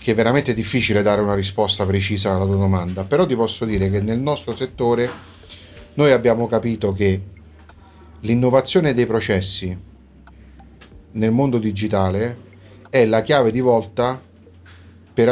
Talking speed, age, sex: 135 wpm, 40-59, male